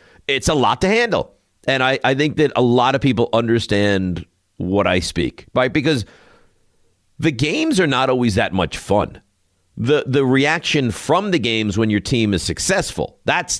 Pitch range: 95-130 Hz